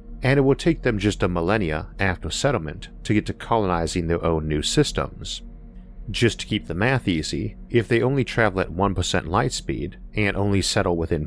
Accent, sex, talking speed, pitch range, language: American, male, 190 wpm, 85-115 Hz, English